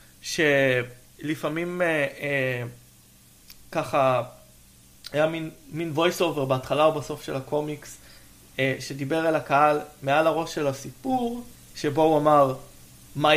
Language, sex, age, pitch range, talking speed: Hebrew, male, 20-39, 135-170 Hz, 115 wpm